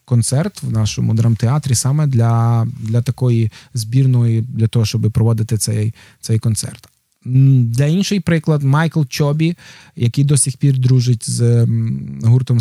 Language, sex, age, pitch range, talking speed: Ukrainian, male, 20-39, 115-155 Hz, 135 wpm